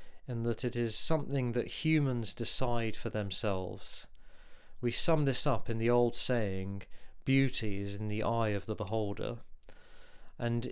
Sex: male